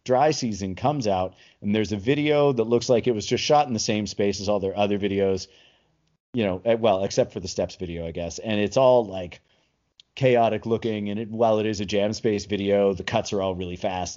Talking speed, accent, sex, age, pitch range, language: 230 wpm, American, male, 30-49, 100-120 Hz, English